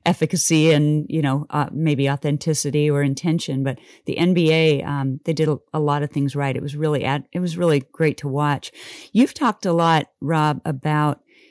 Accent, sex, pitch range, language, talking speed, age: American, female, 155-200 Hz, English, 190 wpm, 40-59